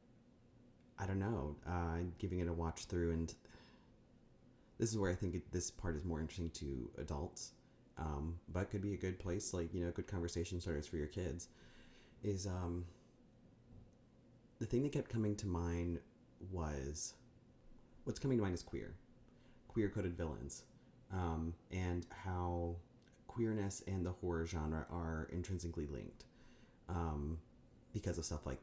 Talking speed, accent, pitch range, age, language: 155 wpm, American, 85-105 Hz, 30-49, English